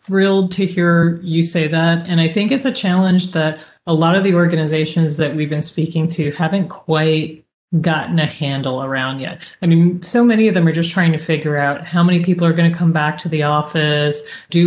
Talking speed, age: 220 wpm, 30-49